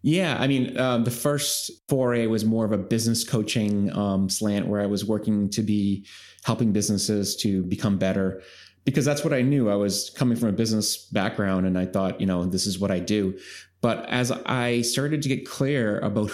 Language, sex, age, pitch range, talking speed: English, male, 30-49, 100-120 Hz, 205 wpm